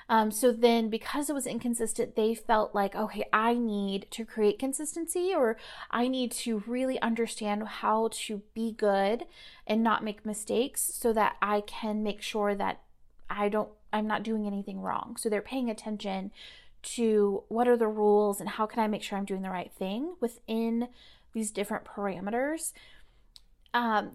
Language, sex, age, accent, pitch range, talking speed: English, female, 30-49, American, 205-245 Hz, 170 wpm